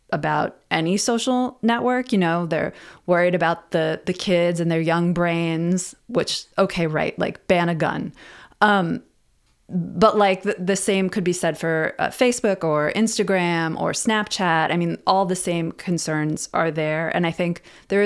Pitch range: 165-200 Hz